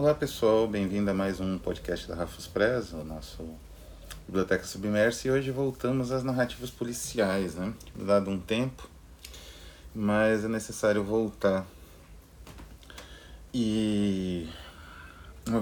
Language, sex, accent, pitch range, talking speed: Portuguese, male, Brazilian, 80-110 Hz, 115 wpm